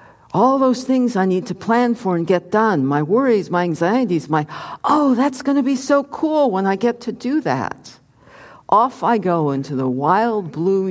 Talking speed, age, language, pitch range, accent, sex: 200 wpm, 60-79, English, 135-195 Hz, American, female